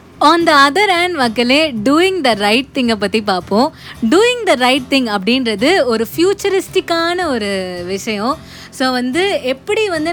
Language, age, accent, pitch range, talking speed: Tamil, 20-39, native, 220-330 Hz, 140 wpm